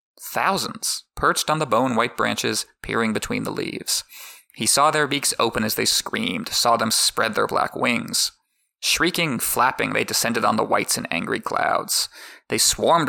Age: 20-39